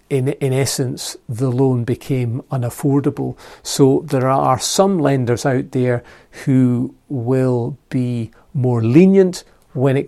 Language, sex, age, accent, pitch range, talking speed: English, male, 40-59, British, 125-145 Hz, 125 wpm